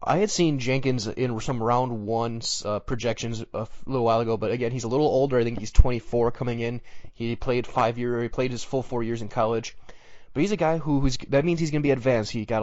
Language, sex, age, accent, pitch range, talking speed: English, male, 20-39, American, 115-135 Hz, 250 wpm